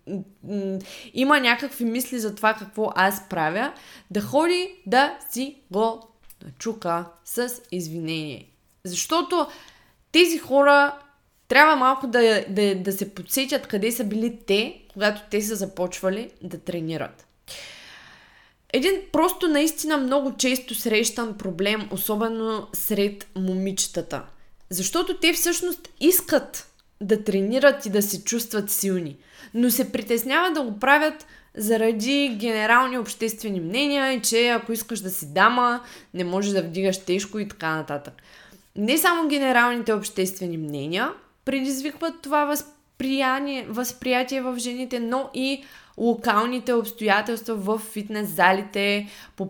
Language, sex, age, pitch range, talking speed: Bulgarian, female, 20-39, 195-260 Hz, 120 wpm